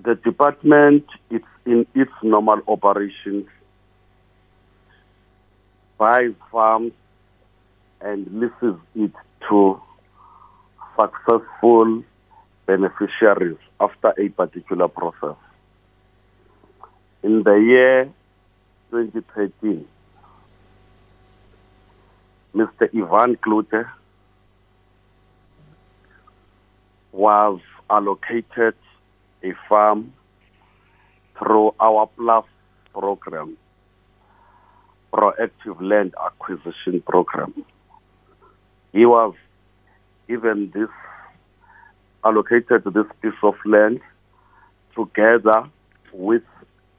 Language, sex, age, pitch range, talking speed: English, male, 60-79, 95-110 Hz, 65 wpm